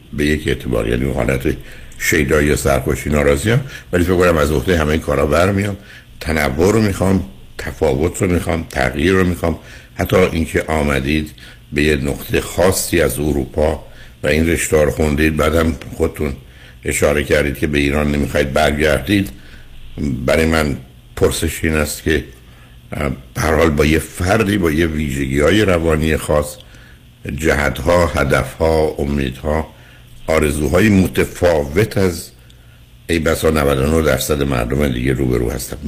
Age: 60-79